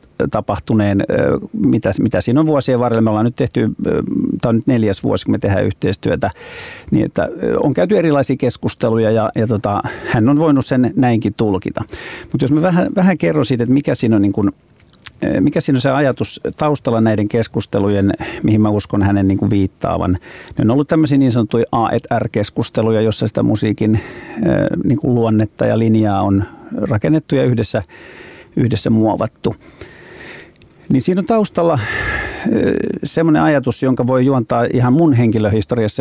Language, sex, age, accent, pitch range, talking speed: Finnish, male, 50-69, native, 105-140 Hz, 155 wpm